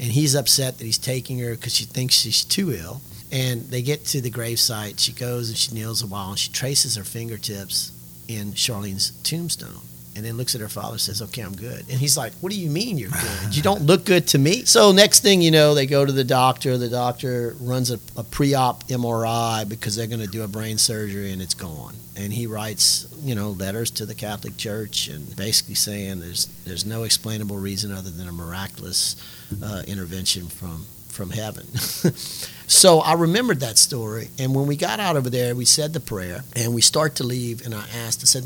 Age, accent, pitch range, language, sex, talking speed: 40-59, American, 100-135 Hz, English, male, 220 wpm